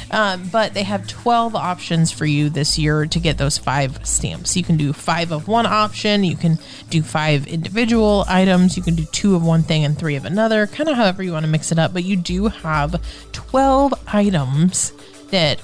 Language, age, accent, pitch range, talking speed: English, 30-49, American, 155-205 Hz, 215 wpm